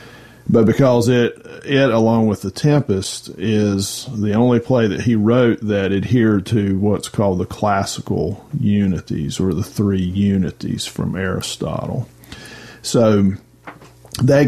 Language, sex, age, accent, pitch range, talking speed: English, male, 40-59, American, 100-120 Hz, 130 wpm